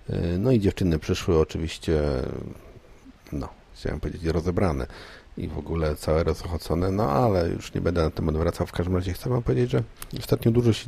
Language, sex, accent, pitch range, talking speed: Polish, male, native, 80-100 Hz, 175 wpm